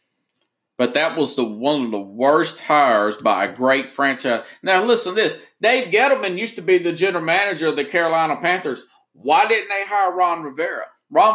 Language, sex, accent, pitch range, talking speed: English, male, American, 155-245 Hz, 190 wpm